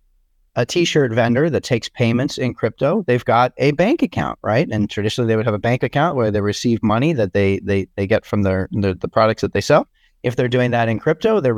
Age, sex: 30-49, male